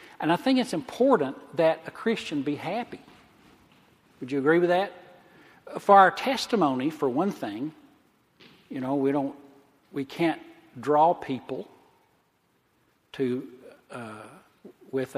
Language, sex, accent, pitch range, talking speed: English, male, American, 145-220 Hz, 125 wpm